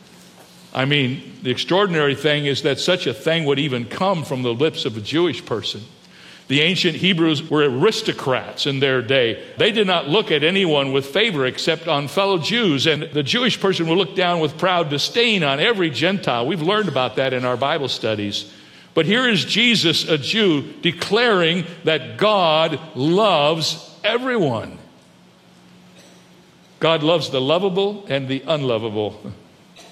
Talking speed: 160 wpm